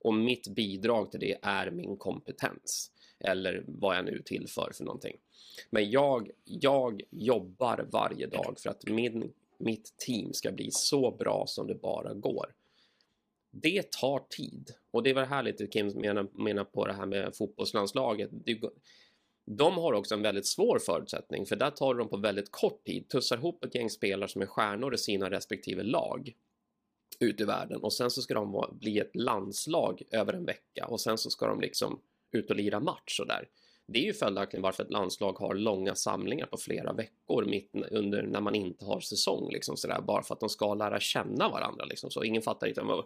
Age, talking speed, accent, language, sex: 30-49, 190 wpm, native, Swedish, male